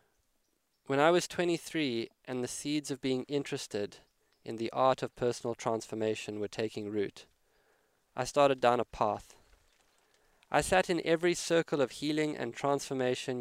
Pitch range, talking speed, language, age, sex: 115-135 Hz, 150 wpm, English, 20-39, male